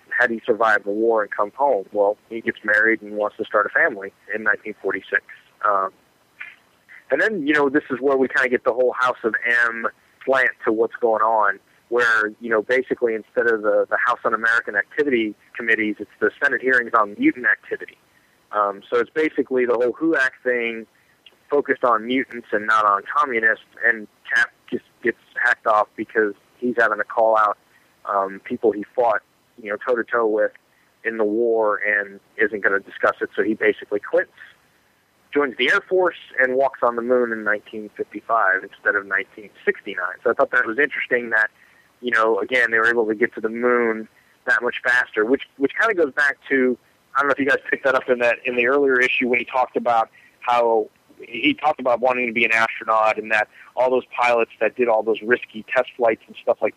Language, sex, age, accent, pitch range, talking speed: English, male, 30-49, American, 110-140 Hz, 205 wpm